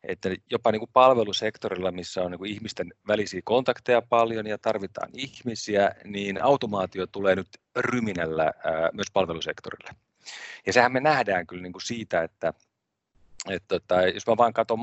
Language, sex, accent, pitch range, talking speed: Finnish, male, native, 90-115 Hz, 160 wpm